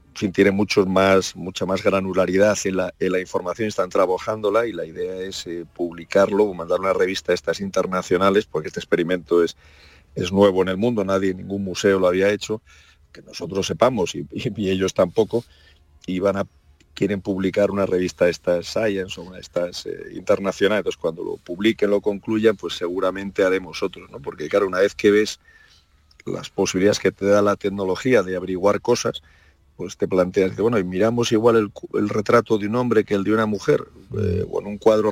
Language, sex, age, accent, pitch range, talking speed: Spanish, male, 40-59, Spanish, 95-110 Hz, 195 wpm